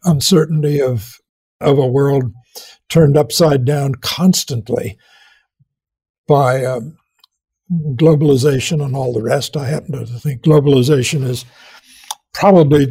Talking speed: 105 wpm